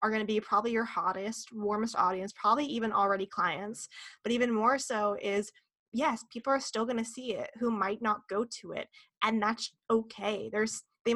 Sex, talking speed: female, 200 wpm